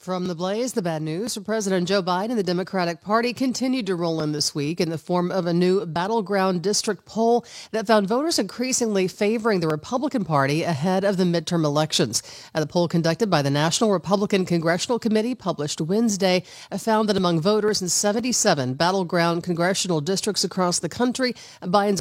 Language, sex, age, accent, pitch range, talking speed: English, female, 40-59, American, 160-205 Hz, 180 wpm